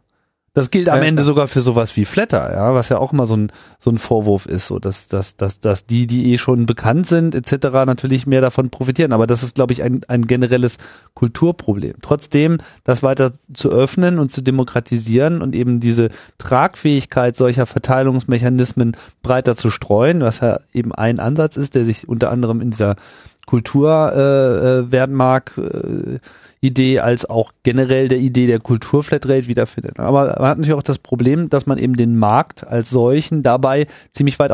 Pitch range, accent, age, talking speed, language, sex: 120-135 Hz, German, 40-59, 180 wpm, German, male